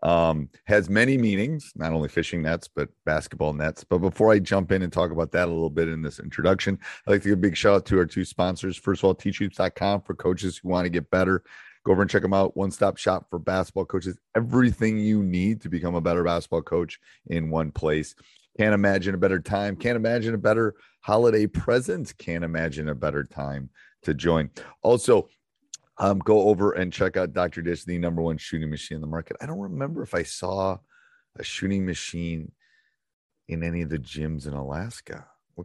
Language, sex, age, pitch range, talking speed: English, male, 30-49, 80-100 Hz, 210 wpm